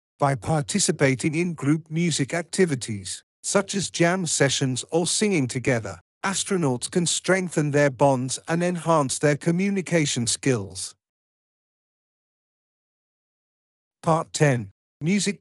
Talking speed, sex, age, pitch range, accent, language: 100 wpm, male, 50-69, 130-175 Hz, British, English